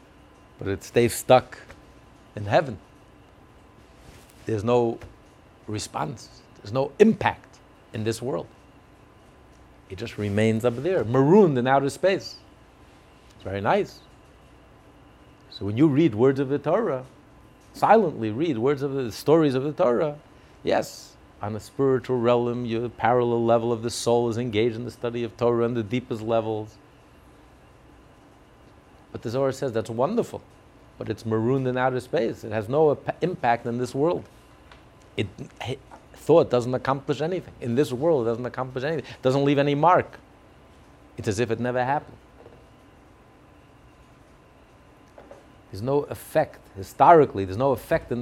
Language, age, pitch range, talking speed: English, 50-69, 110-135 Hz, 145 wpm